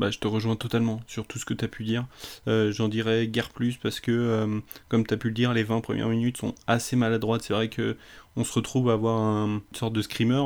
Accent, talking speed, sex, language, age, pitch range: French, 250 wpm, male, French, 20-39, 110-120 Hz